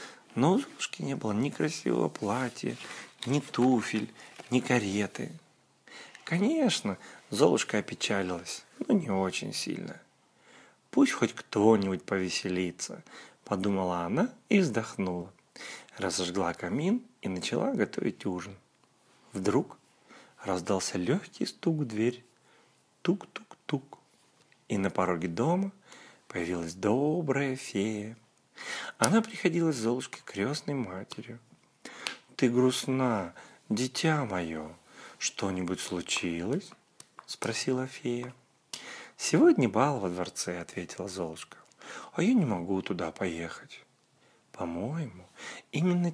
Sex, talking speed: male, 100 wpm